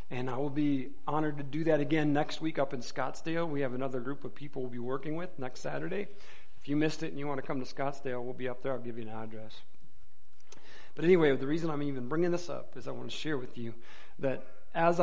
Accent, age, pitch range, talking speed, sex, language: American, 40-59, 125-150 Hz, 255 wpm, male, English